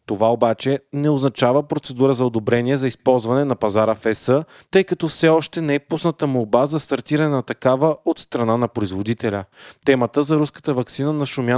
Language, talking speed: Bulgarian, 180 wpm